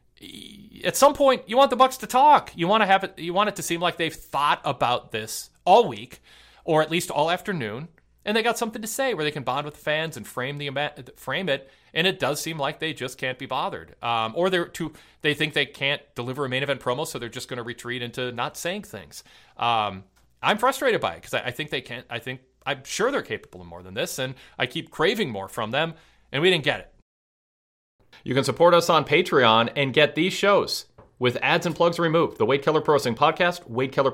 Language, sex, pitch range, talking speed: English, male, 120-170 Hz, 240 wpm